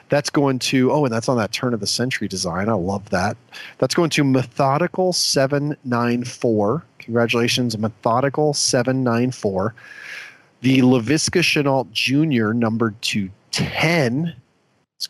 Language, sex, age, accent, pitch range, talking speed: English, male, 40-59, American, 115-140 Hz, 120 wpm